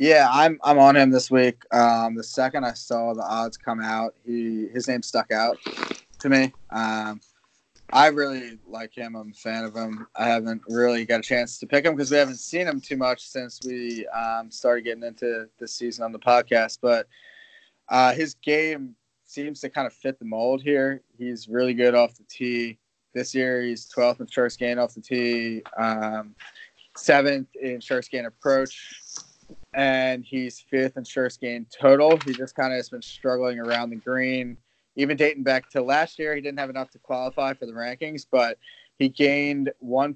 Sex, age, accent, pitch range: male, 20-39, American, 120-140 Hz